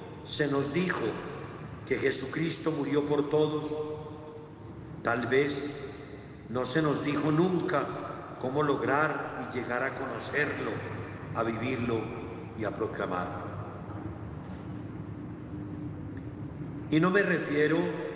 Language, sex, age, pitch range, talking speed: Spanish, male, 50-69, 130-155 Hz, 100 wpm